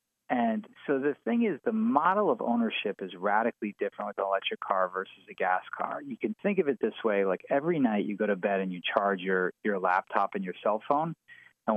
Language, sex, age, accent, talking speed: English, male, 40-59, American, 230 wpm